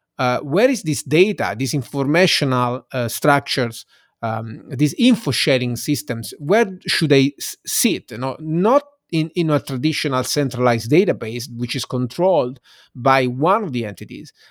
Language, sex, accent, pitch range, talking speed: English, male, Italian, 125-150 Hz, 140 wpm